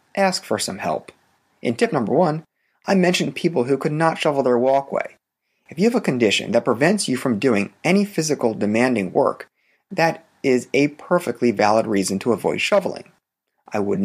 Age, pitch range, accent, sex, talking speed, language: 30-49, 130-185 Hz, American, male, 180 wpm, English